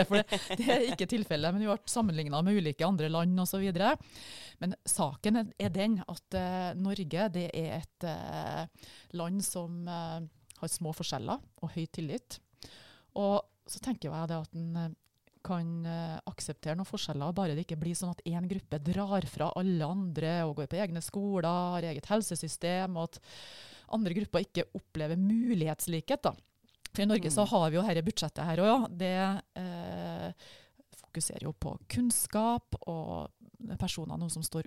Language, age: English, 30-49